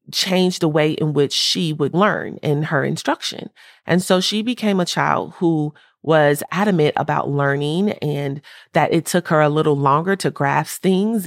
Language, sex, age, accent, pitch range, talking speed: English, female, 30-49, American, 150-190 Hz, 175 wpm